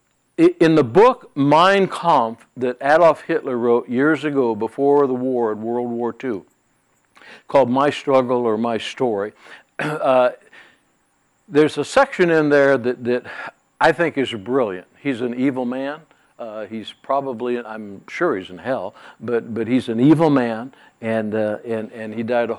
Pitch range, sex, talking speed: 120-150 Hz, male, 160 wpm